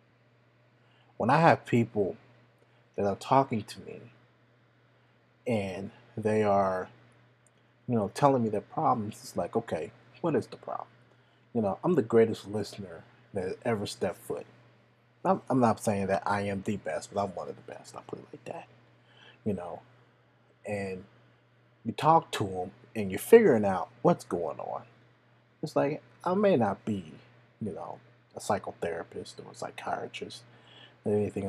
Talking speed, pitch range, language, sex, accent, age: 160 wpm, 110-165 Hz, English, male, American, 30-49